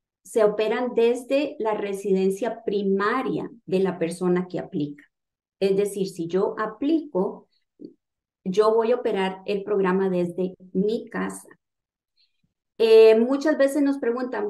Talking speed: 125 wpm